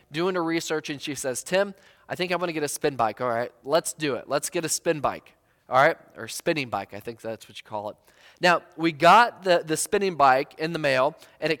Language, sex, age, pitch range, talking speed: English, male, 20-39, 135-180 Hz, 260 wpm